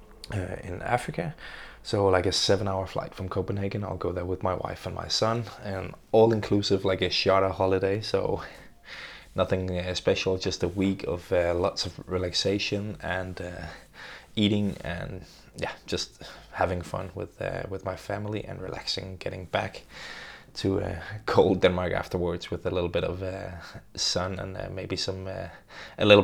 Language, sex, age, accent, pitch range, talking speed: English, male, 20-39, Danish, 95-105 Hz, 170 wpm